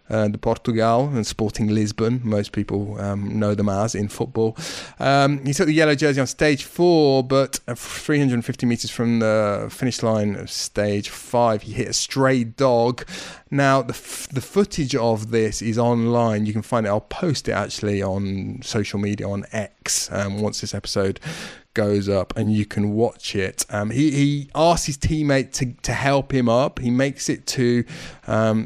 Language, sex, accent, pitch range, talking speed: English, male, British, 110-130 Hz, 180 wpm